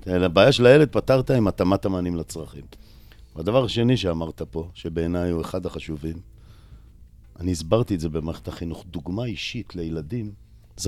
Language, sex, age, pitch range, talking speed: Hebrew, male, 50-69, 85-110 Hz, 145 wpm